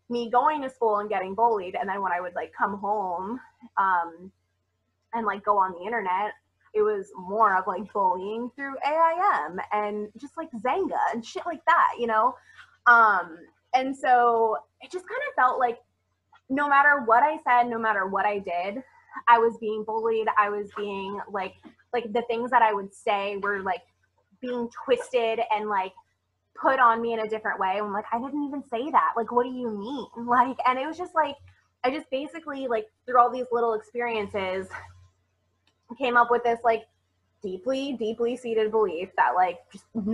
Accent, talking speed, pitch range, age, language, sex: American, 190 wpm, 195-250 Hz, 20-39, English, female